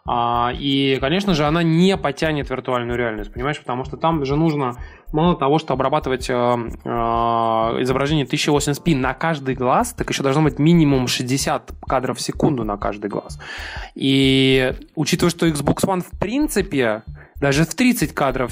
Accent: native